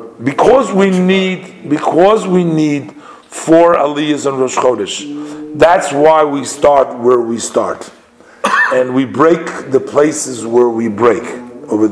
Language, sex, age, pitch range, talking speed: English, male, 50-69, 130-165 Hz, 135 wpm